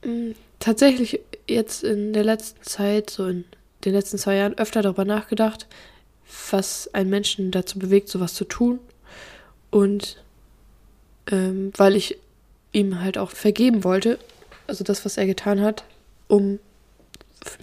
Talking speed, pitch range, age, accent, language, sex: 140 wpm, 195-215 Hz, 10-29, German, German, female